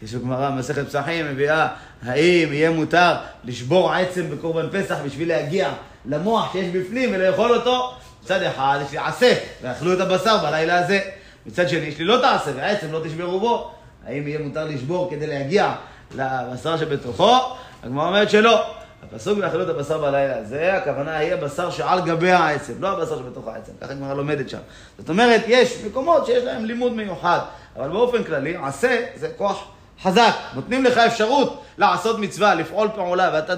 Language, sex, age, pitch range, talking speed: Hebrew, male, 30-49, 150-220 Hz, 130 wpm